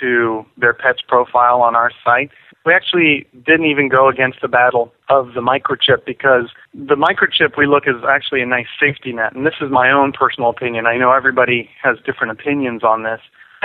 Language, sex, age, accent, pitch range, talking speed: English, male, 30-49, American, 120-145 Hz, 200 wpm